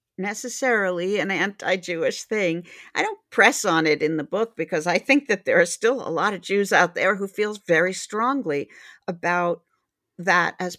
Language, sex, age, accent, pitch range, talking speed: English, female, 50-69, American, 170-210 Hz, 185 wpm